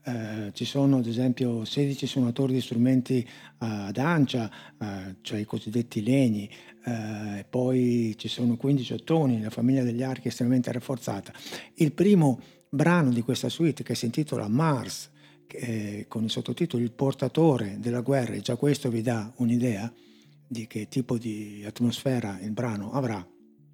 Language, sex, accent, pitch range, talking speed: Italian, male, native, 110-140 Hz, 160 wpm